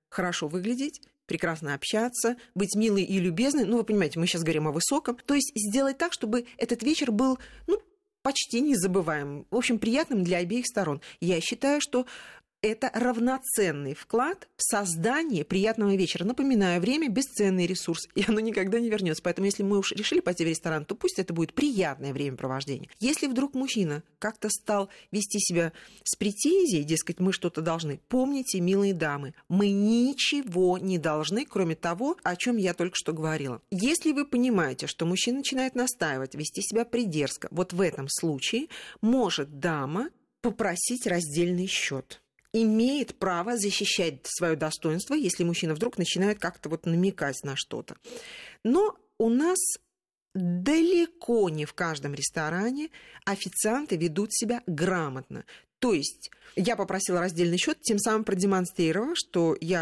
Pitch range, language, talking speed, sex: 170-245 Hz, Russian, 150 wpm, female